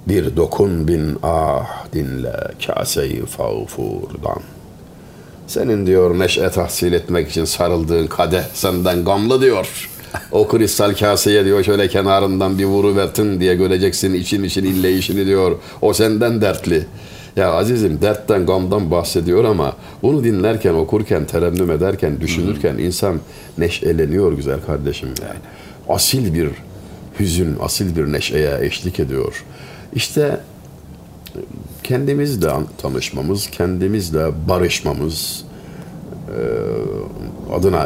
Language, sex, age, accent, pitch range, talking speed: Turkish, male, 60-79, native, 85-105 Hz, 105 wpm